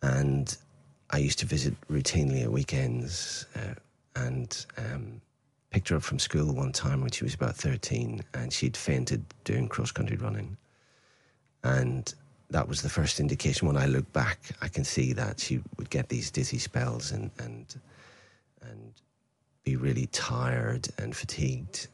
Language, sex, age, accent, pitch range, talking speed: English, male, 40-59, British, 70-115 Hz, 155 wpm